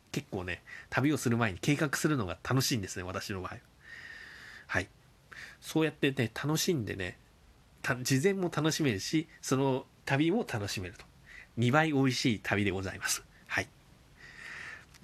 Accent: native